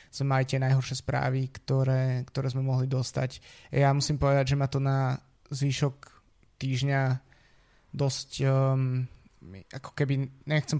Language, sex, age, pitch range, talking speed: Slovak, male, 20-39, 130-140 Hz, 130 wpm